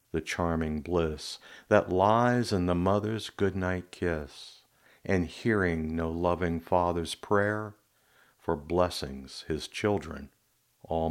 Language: English